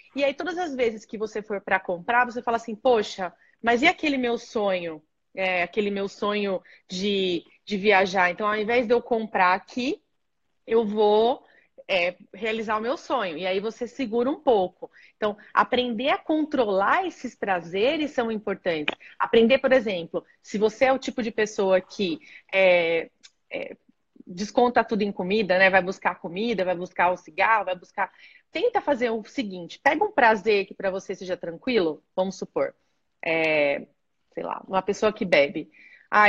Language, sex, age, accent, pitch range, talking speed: Portuguese, female, 30-49, Brazilian, 195-255 Hz, 165 wpm